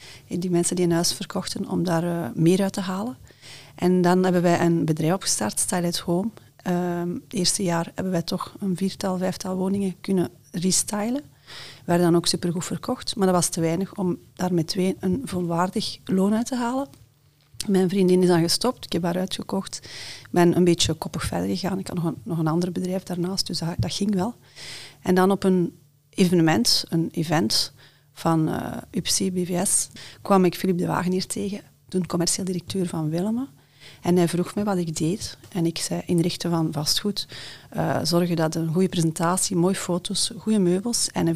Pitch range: 165-190 Hz